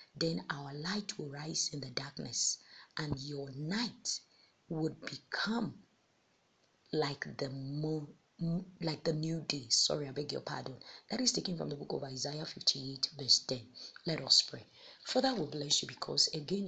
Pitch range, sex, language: 140-185 Hz, female, English